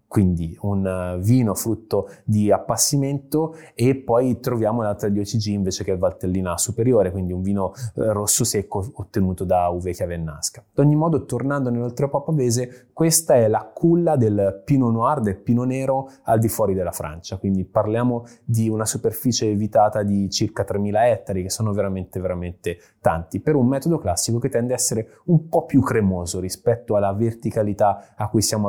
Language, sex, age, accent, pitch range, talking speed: Italian, male, 20-39, native, 100-120 Hz, 165 wpm